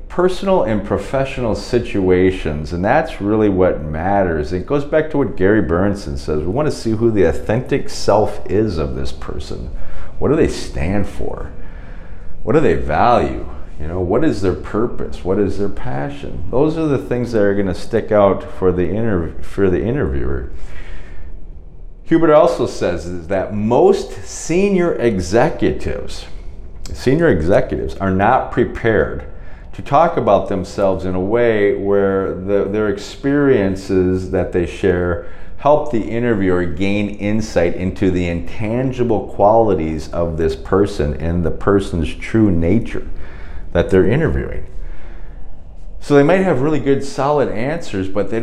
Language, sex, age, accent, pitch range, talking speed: English, male, 40-59, American, 80-110 Hz, 150 wpm